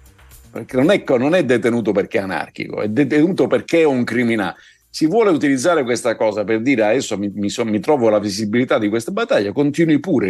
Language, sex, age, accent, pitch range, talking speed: Italian, male, 50-69, native, 110-155 Hz, 205 wpm